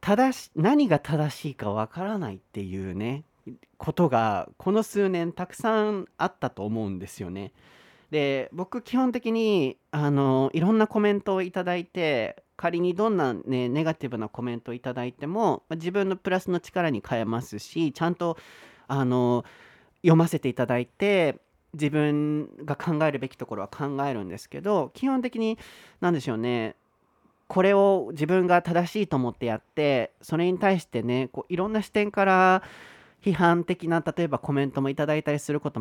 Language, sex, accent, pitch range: Japanese, male, native, 125-195 Hz